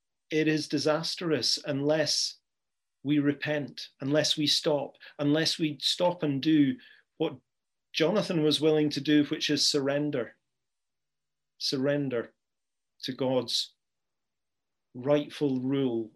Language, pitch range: English, 140-170 Hz